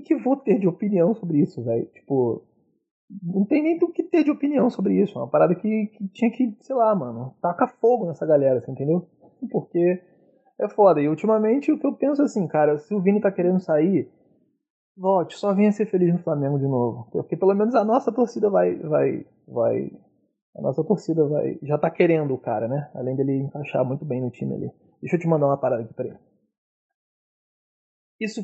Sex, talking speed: male, 205 wpm